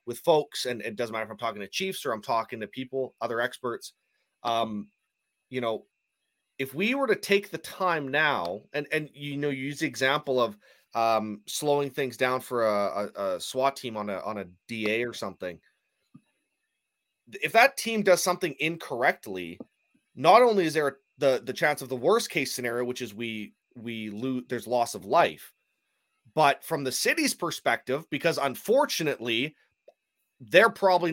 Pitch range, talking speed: 125-160 Hz, 175 wpm